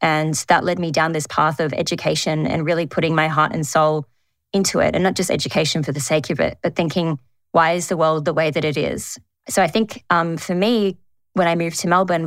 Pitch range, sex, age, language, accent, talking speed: 160-185 Hz, female, 20-39, English, Australian, 240 wpm